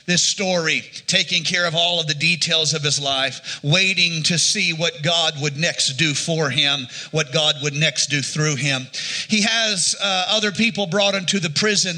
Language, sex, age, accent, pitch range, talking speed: English, male, 40-59, American, 150-180 Hz, 190 wpm